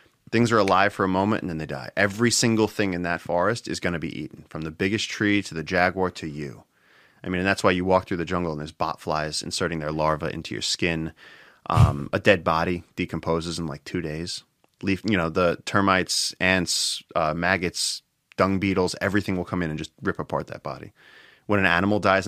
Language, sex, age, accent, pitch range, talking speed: English, male, 20-39, American, 85-95 Hz, 225 wpm